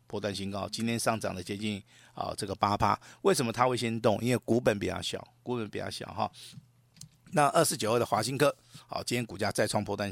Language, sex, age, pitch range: Chinese, male, 50-69, 100-130 Hz